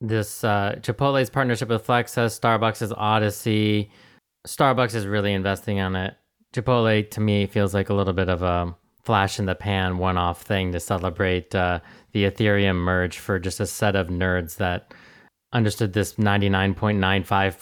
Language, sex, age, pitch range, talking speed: English, male, 30-49, 95-120 Hz, 165 wpm